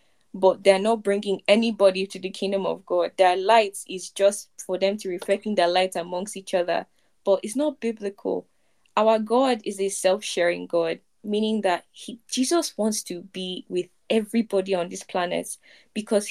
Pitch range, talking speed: 190-240 Hz, 175 wpm